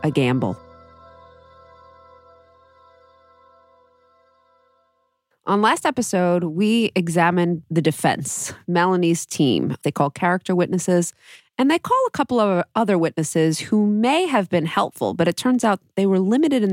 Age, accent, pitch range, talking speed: 30-49, American, 155-200 Hz, 130 wpm